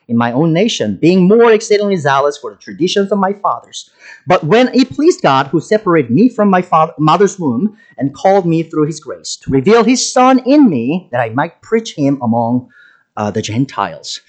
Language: English